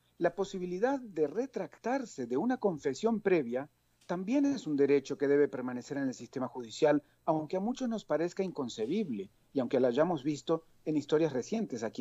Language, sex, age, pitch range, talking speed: Spanish, male, 40-59, 135-210 Hz, 170 wpm